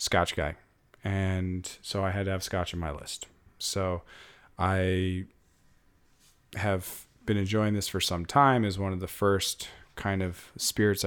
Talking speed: 155 wpm